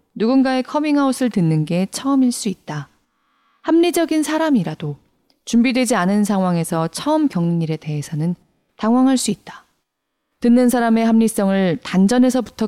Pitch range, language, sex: 175-255 Hz, Korean, female